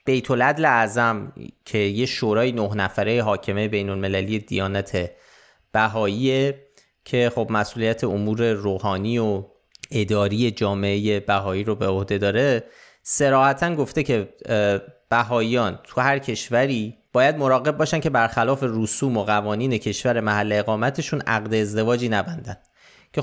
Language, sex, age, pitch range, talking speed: Persian, male, 30-49, 105-145 Hz, 120 wpm